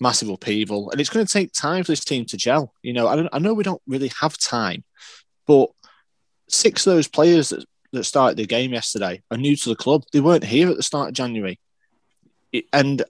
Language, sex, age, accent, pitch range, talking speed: English, male, 20-39, British, 120-180 Hz, 225 wpm